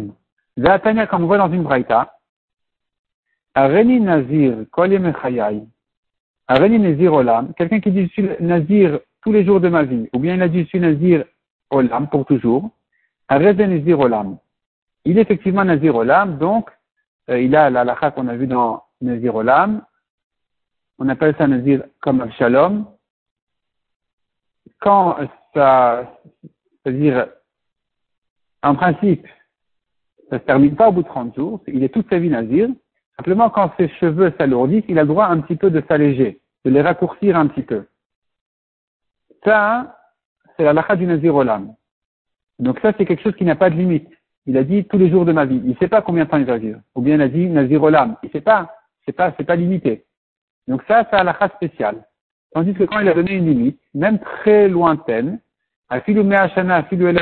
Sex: male